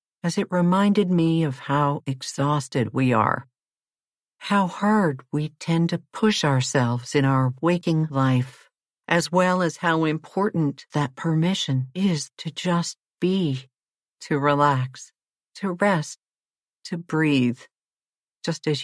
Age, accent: 60-79, American